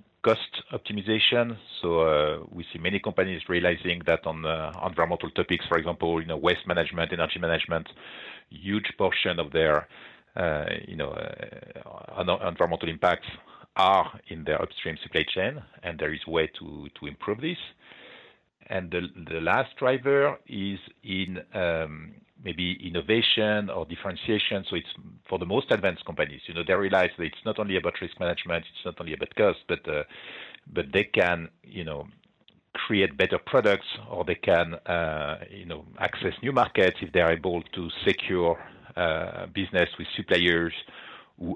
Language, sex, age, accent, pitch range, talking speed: English, male, 50-69, French, 85-95 Hz, 160 wpm